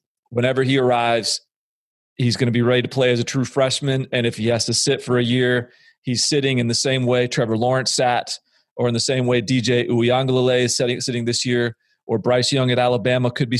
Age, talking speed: 40-59, 225 wpm